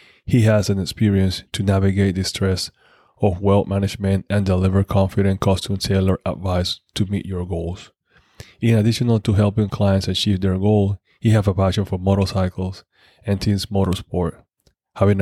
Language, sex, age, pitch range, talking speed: English, male, 20-39, 95-105 Hz, 155 wpm